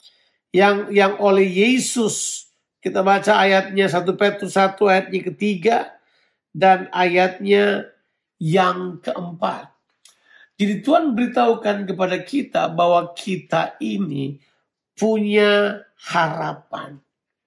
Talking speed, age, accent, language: 90 wpm, 50-69, native, Indonesian